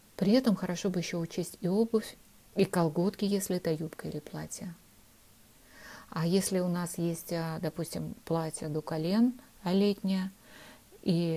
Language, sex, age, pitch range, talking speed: Russian, female, 50-69, 160-200 Hz, 135 wpm